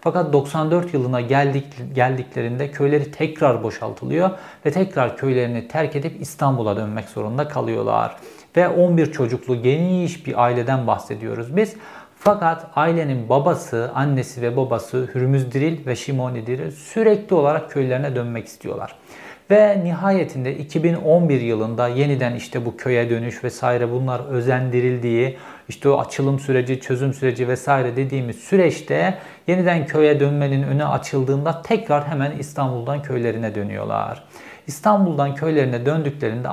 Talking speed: 120 wpm